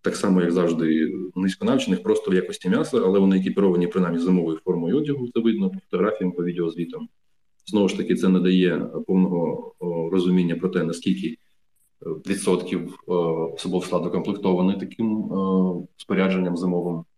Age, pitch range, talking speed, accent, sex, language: 20-39, 85-100 Hz, 145 wpm, native, male, Ukrainian